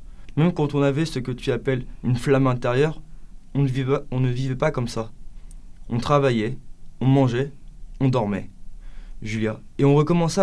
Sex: male